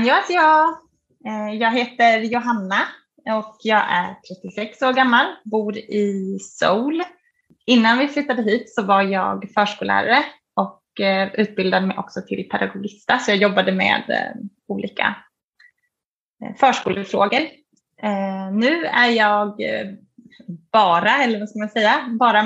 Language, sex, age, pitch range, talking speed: Swedish, female, 20-39, 200-240 Hz, 100 wpm